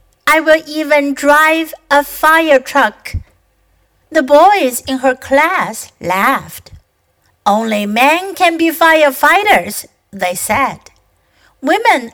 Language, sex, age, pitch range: Chinese, female, 60-79, 235-325 Hz